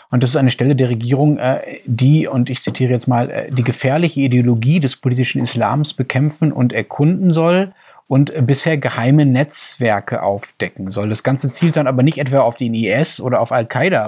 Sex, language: male, German